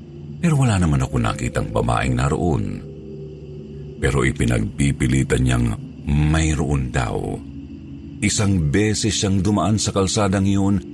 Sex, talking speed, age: male, 110 wpm, 50-69